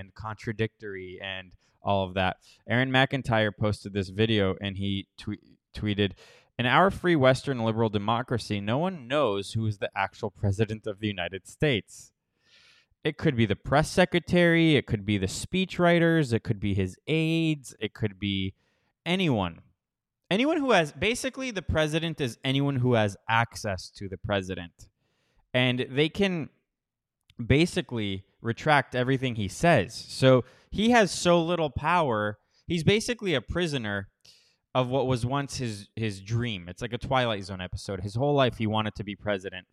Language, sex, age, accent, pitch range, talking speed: English, male, 20-39, American, 100-140 Hz, 160 wpm